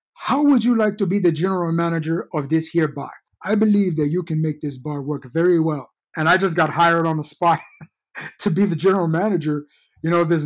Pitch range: 165-215 Hz